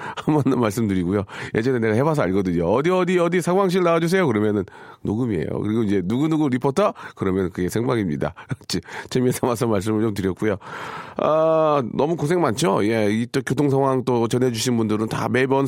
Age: 40-59